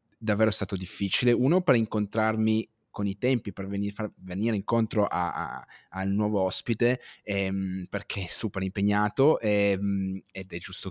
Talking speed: 150 wpm